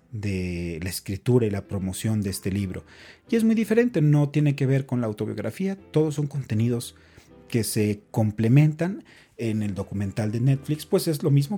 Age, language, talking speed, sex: 40-59, English, 180 wpm, male